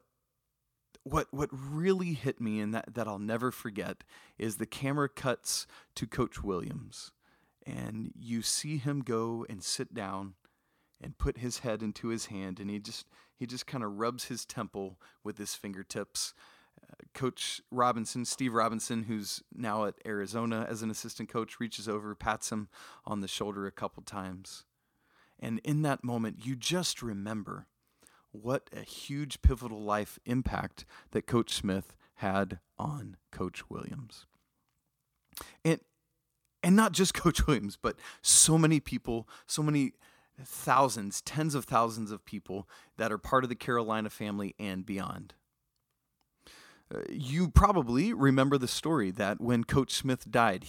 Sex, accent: male, American